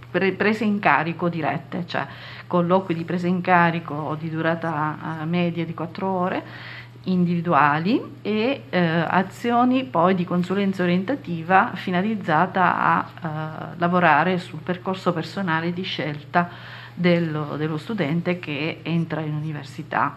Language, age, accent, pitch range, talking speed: Italian, 40-59, native, 160-185 Hz, 120 wpm